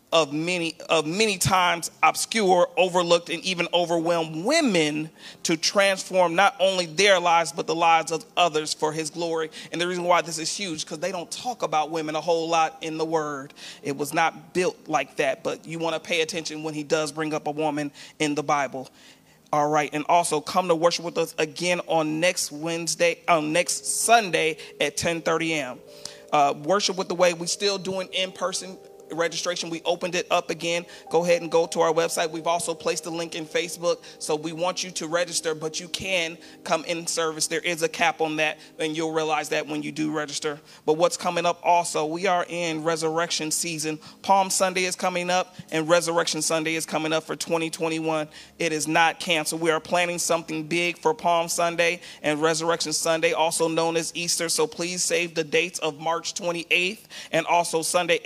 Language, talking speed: English, 200 wpm